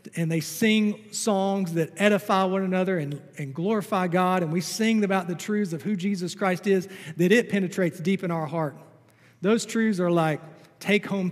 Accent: American